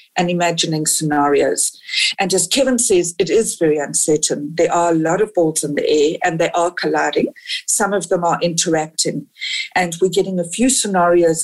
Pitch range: 160-215 Hz